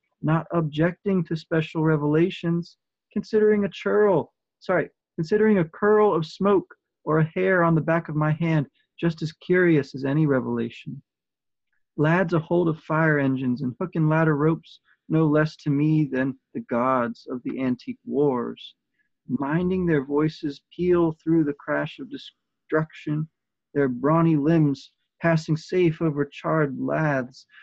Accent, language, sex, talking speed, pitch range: American, English, male, 150 wpm, 140-170 Hz